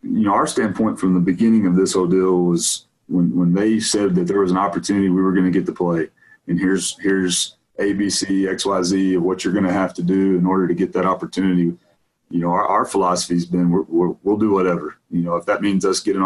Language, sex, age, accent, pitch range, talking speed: English, male, 30-49, American, 90-95 Hz, 260 wpm